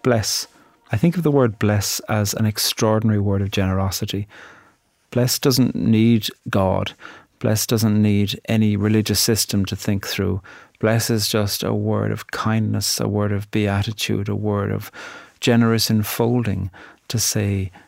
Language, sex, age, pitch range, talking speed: English, male, 40-59, 100-115 Hz, 150 wpm